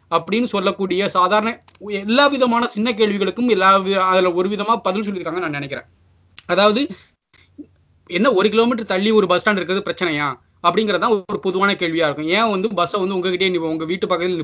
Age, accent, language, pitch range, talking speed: 30-49, native, Tamil, 175-220 Hz, 170 wpm